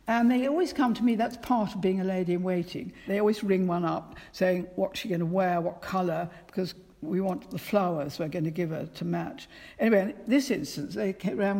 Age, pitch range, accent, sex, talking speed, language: 60-79, 180-235 Hz, British, female, 220 wpm, English